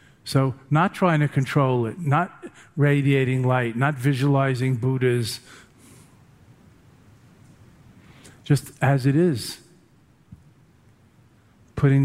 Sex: male